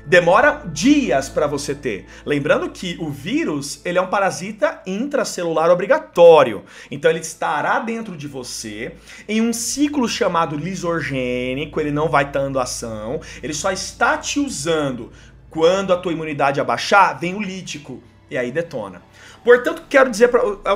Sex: male